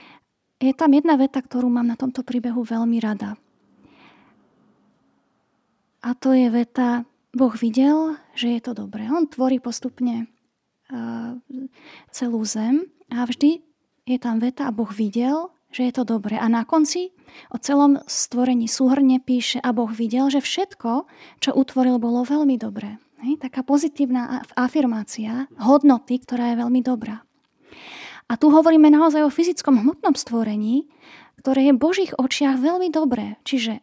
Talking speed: 140 wpm